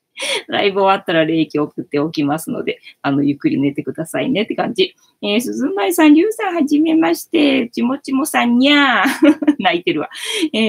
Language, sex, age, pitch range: Japanese, female, 20-39, 185-290 Hz